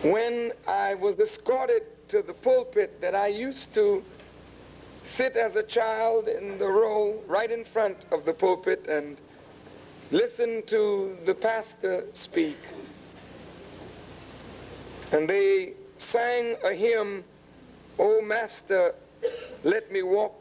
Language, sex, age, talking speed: English, male, 60-79, 120 wpm